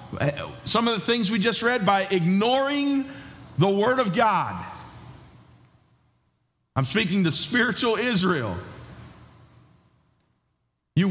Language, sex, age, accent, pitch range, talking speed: English, male, 50-69, American, 155-225 Hz, 105 wpm